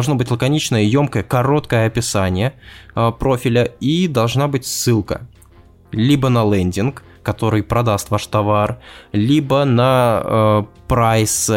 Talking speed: 120 wpm